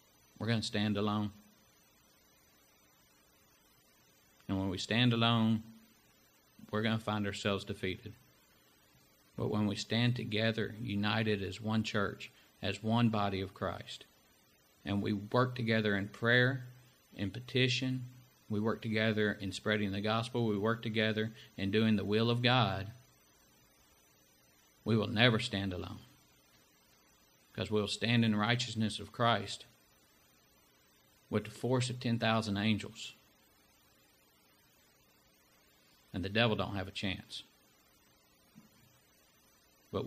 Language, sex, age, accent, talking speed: English, male, 50-69, American, 120 wpm